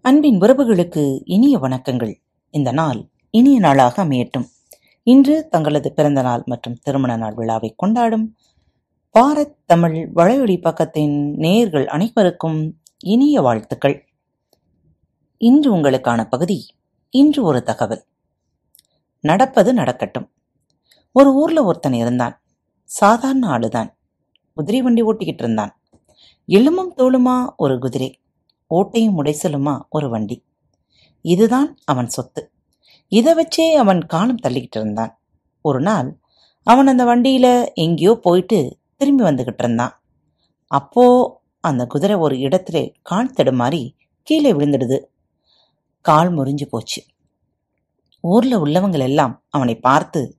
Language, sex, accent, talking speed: Tamil, female, native, 100 wpm